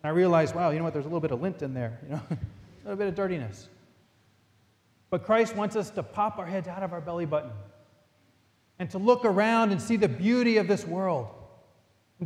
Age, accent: 30-49, American